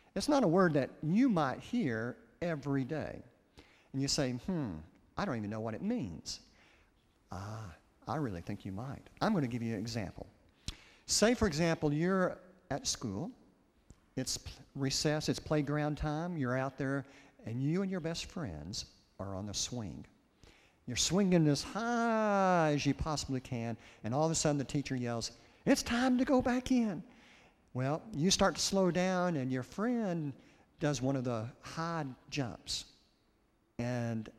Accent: American